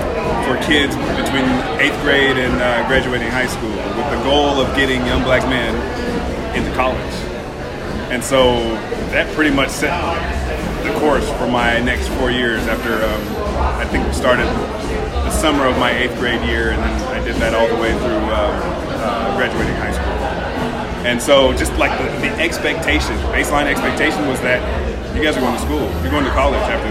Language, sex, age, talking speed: English, male, 30-49, 185 wpm